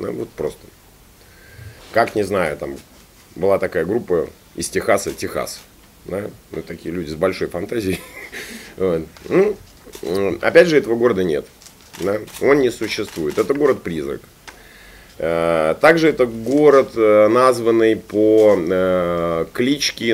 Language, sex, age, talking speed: Russian, male, 30-49, 105 wpm